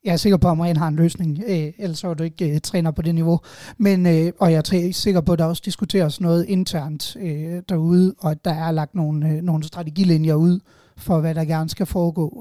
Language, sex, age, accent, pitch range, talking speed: Danish, male, 30-49, native, 160-180 Hz, 235 wpm